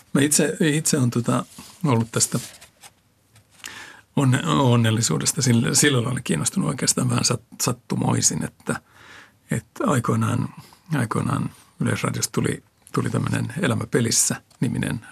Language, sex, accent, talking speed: Finnish, male, native, 95 wpm